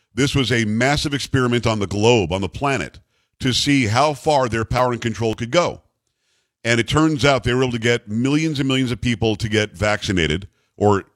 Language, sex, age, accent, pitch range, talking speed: English, male, 50-69, American, 105-135 Hz, 210 wpm